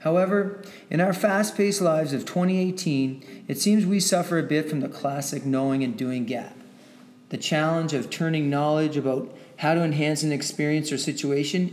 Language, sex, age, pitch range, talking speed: English, male, 30-49, 140-180 Hz, 170 wpm